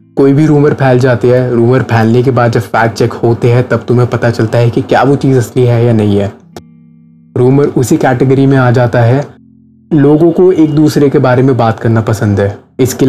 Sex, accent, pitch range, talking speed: male, native, 120-135 Hz, 220 wpm